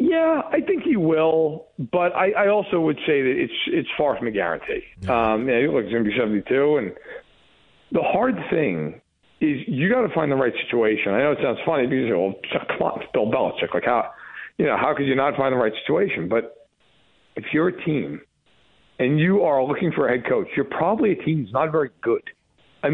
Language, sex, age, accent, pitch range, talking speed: English, male, 50-69, American, 135-190 Hz, 220 wpm